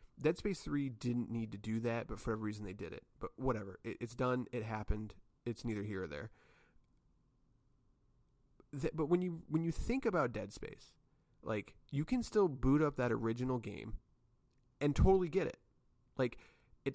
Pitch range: 110-145 Hz